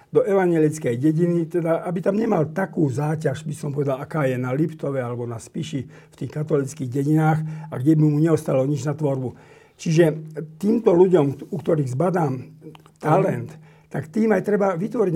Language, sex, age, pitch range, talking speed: Slovak, male, 50-69, 145-180 Hz, 170 wpm